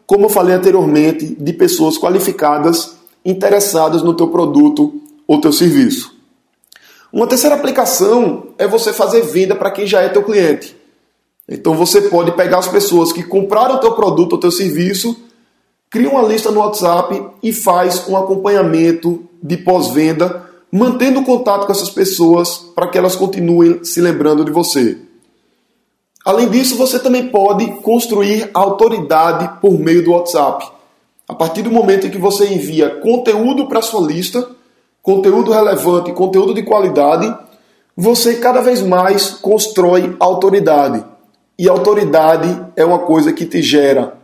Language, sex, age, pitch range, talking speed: Portuguese, male, 20-39, 175-230 Hz, 145 wpm